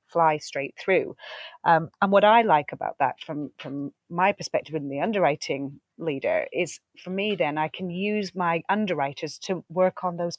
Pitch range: 150-185 Hz